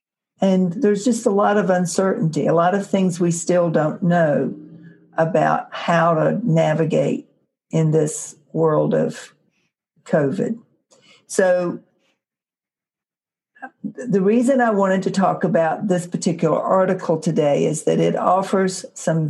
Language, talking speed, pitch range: English, 130 wpm, 160-195 Hz